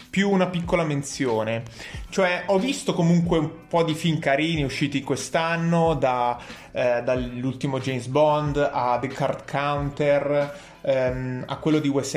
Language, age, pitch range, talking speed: Italian, 30-49, 140-185 Hz, 145 wpm